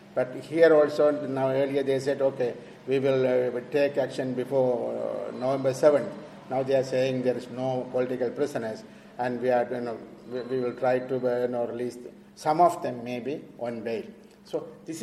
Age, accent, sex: 50-69, Indian, male